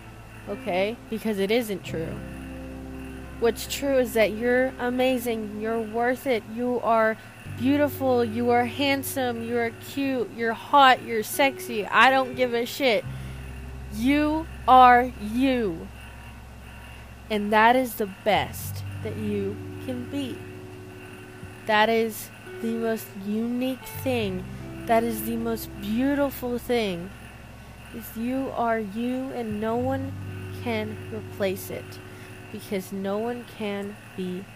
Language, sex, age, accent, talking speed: English, female, 20-39, American, 120 wpm